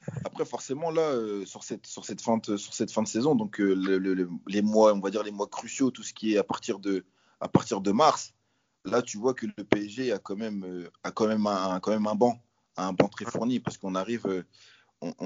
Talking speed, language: 250 wpm, French